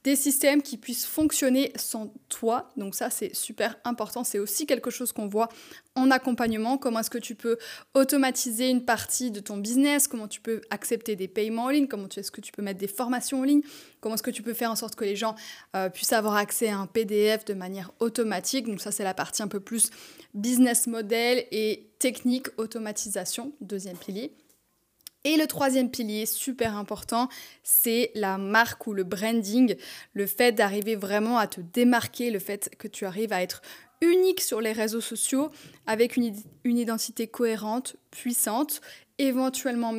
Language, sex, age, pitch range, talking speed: French, female, 20-39, 215-255 Hz, 185 wpm